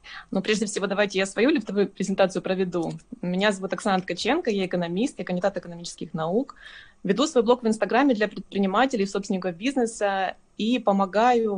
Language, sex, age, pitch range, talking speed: Russian, female, 20-39, 190-240 Hz, 155 wpm